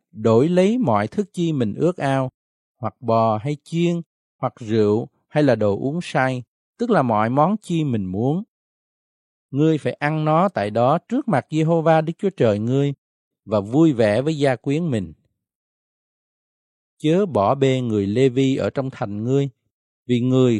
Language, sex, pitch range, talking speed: Vietnamese, male, 115-160 Hz, 170 wpm